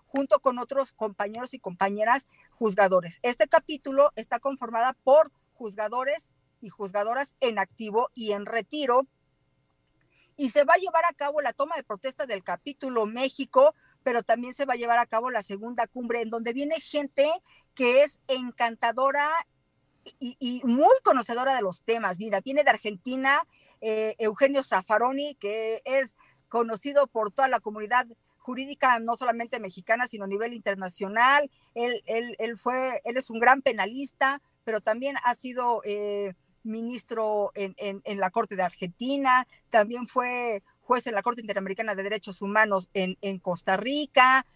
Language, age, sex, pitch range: Spanish, 50-69, female, 215-265 Hz